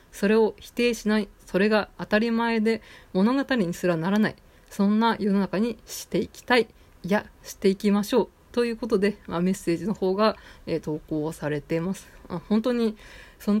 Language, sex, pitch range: Japanese, female, 175-215 Hz